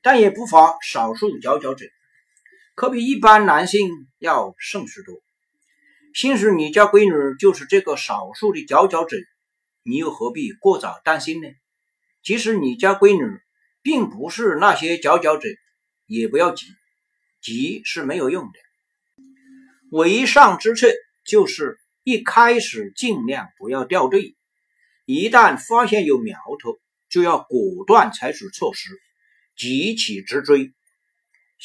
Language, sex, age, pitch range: Chinese, male, 50-69, 185-275 Hz